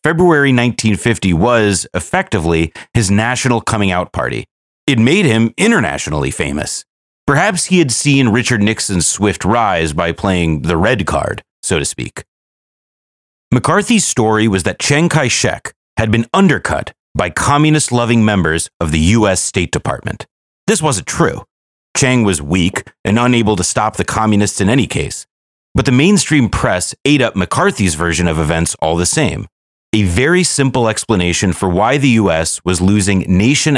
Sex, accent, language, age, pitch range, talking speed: male, American, English, 30-49, 85-125 Hz, 150 wpm